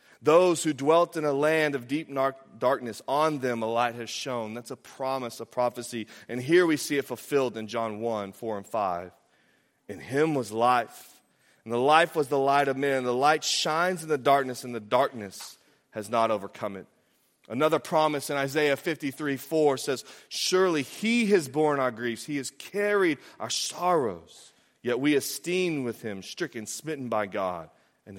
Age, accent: 30-49, American